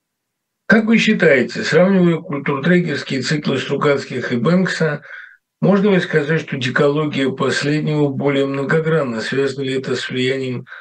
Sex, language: male, Russian